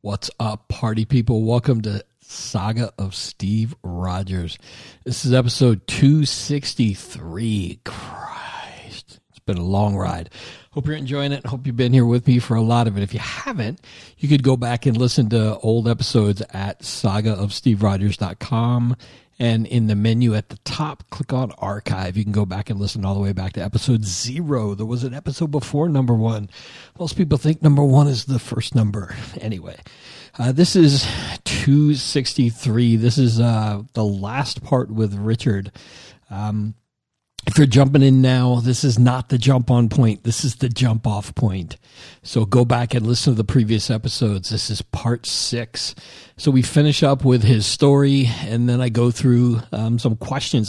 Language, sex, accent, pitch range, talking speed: English, male, American, 110-130 Hz, 175 wpm